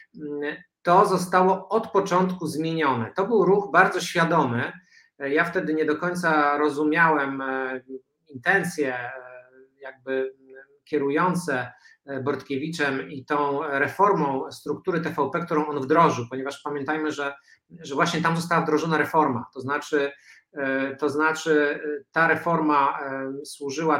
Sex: male